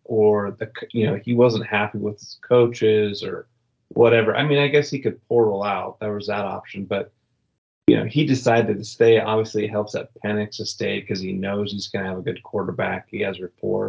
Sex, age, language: male, 30-49, English